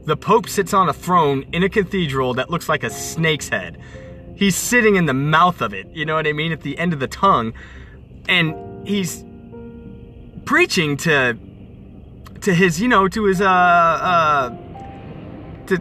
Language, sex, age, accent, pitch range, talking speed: English, male, 20-39, American, 130-195 Hz, 175 wpm